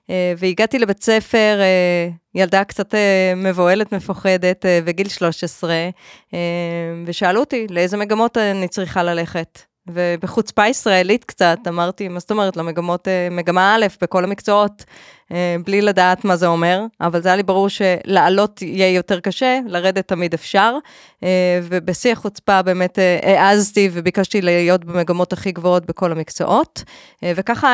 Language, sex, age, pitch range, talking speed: Hebrew, female, 20-39, 175-205 Hz, 120 wpm